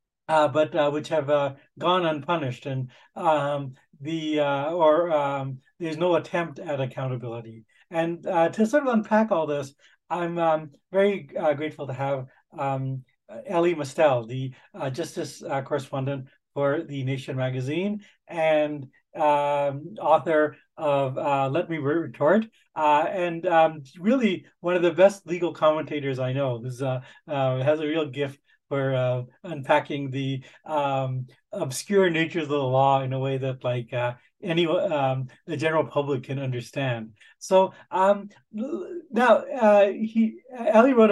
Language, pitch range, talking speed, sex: English, 135-175 Hz, 150 wpm, male